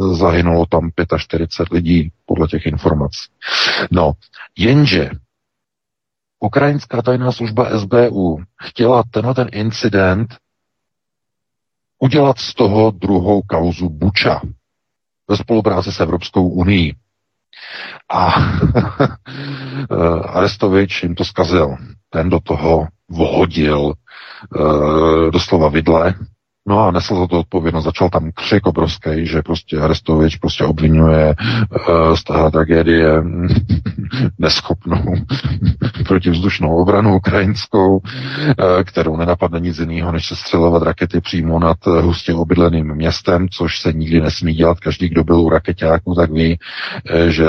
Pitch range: 80-100 Hz